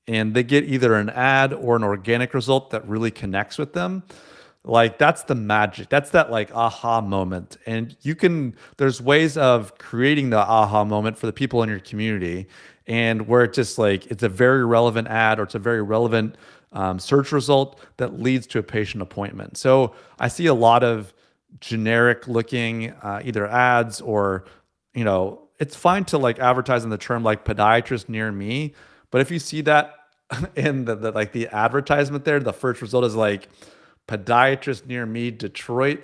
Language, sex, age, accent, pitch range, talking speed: English, male, 30-49, American, 105-135 Hz, 185 wpm